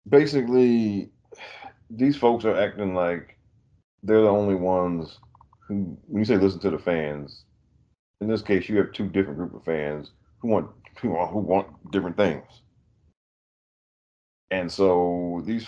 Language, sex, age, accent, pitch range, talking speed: English, male, 40-59, American, 80-105 Hz, 150 wpm